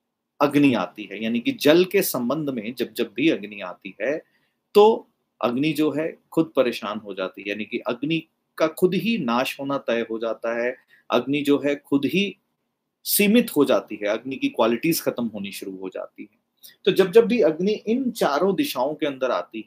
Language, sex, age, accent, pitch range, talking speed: Hindi, male, 30-49, native, 115-190 Hz, 200 wpm